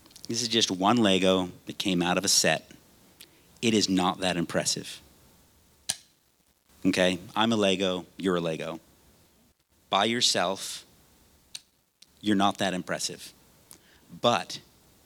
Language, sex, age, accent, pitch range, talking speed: English, male, 50-69, American, 90-125 Hz, 120 wpm